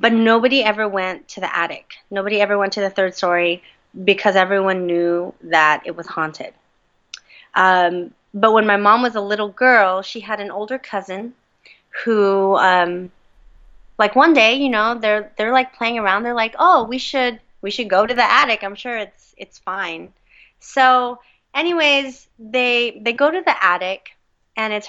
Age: 20-39